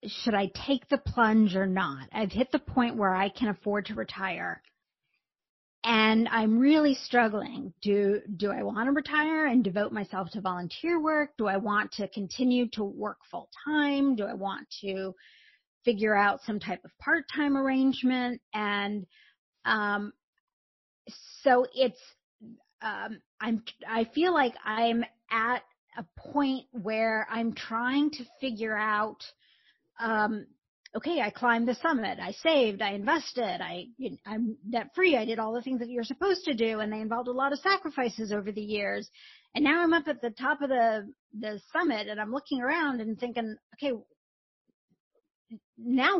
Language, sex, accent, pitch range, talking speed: English, female, American, 215-275 Hz, 160 wpm